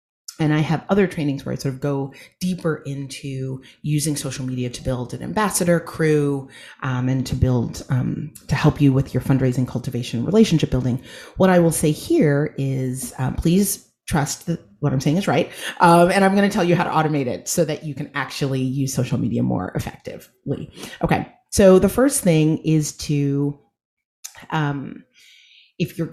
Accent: American